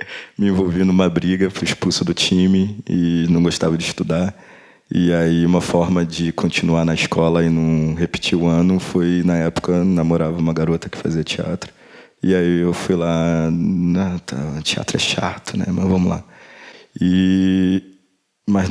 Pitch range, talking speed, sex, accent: 85-100 Hz, 165 wpm, male, Brazilian